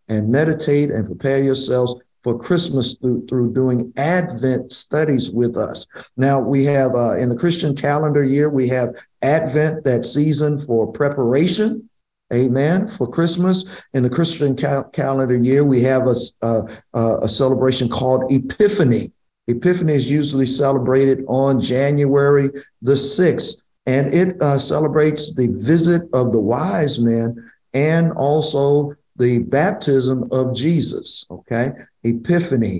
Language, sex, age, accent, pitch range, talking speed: English, male, 50-69, American, 125-150 Hz, 135 wpm